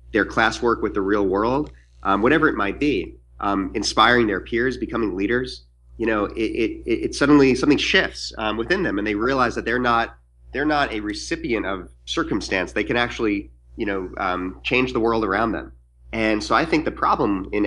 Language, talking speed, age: English, 195 wpm, 30-49